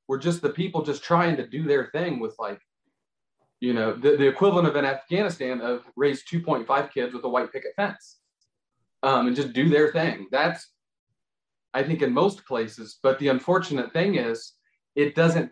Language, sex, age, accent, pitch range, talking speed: English, male, 30-49, American, 125-165 Hz, 185 wpm